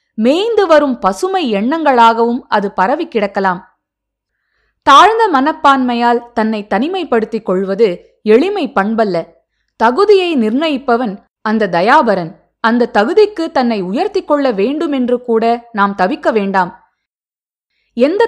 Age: 20-39